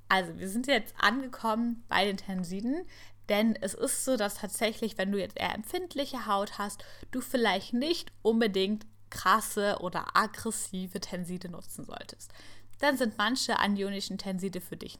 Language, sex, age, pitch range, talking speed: German, female, 10-29, 185-230 Hz, 150 wpm